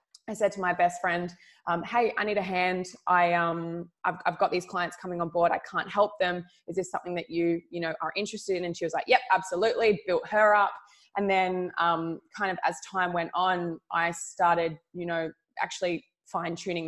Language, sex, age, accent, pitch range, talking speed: French, female, 20-39, Australian, 165-185 Hz, 215 wpm